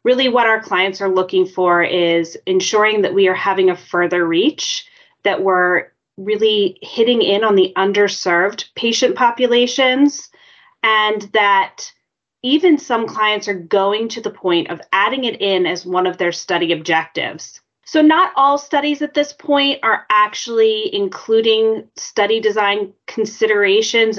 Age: 30-49